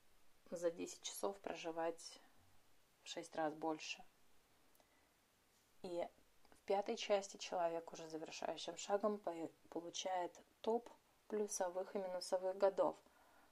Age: 30-49